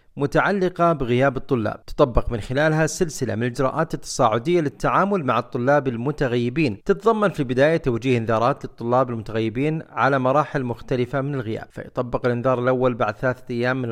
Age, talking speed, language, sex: 40-59, 140 wpm, Arabic, male